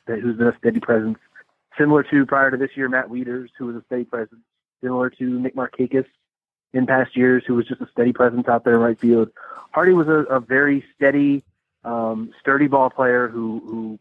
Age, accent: 30-49, American